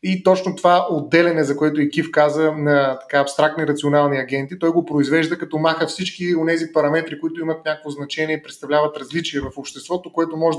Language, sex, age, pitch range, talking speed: Bulgarian, male, 30-49, 150-185 Hz, 185 wpm